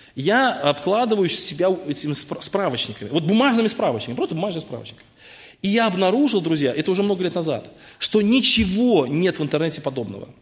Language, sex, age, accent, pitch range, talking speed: Russian, male, 20-39, native, 165-220 Hz, 150 wpm